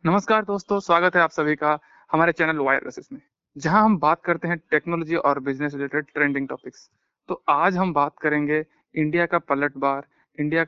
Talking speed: 165 wpm